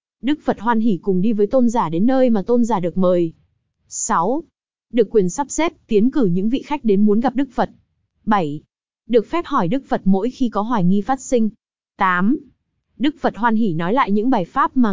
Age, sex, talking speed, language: 20-39, female, 220 wpm, Vietnamese